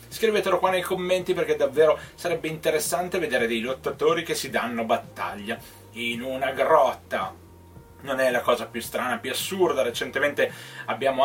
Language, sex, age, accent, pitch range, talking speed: Italian, male, 30-49, native, 125-190 Hz, 150 wpm